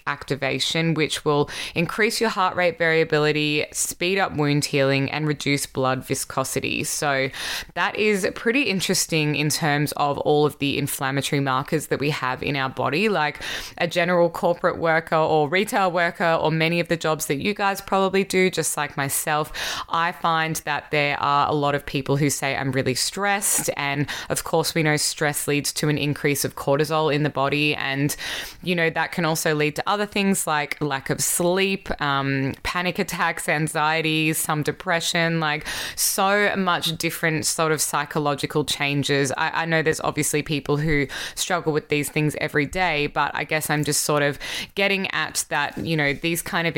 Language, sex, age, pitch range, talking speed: English, female, 20-39, 145-170 Hz, 180 wpm